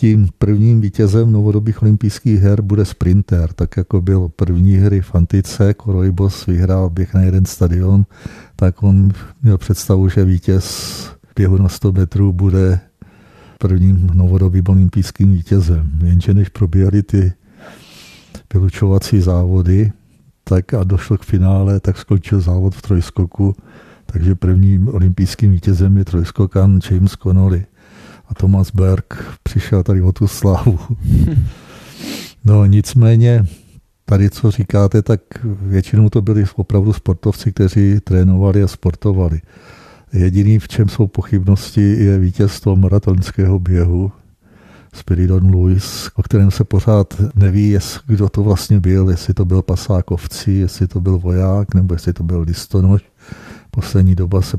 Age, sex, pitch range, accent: 50-69, male, 95-105 Hz, native